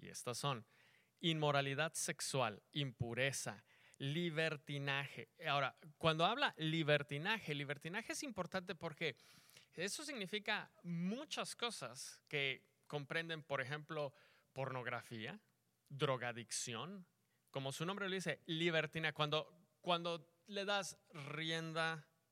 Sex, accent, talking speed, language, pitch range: male, Mexican, 95 wpm, English, 140-190 Hz